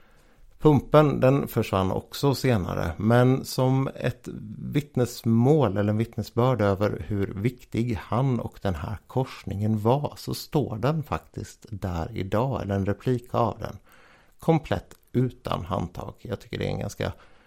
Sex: male